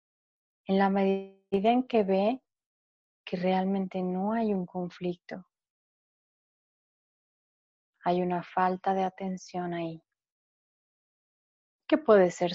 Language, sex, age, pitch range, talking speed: Spanish, female, 30-49, 175-200 Hz, 100 wpm